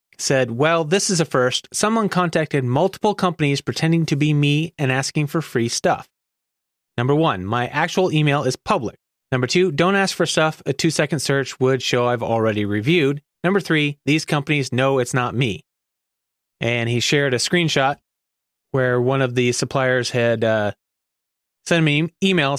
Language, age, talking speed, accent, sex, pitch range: English, 30-49, 170 wpm, American, male, 125-160 Hz